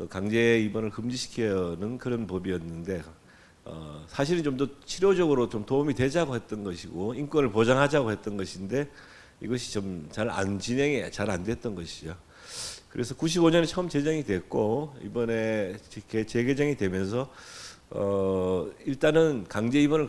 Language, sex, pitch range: Korean, male, 95-130 Hz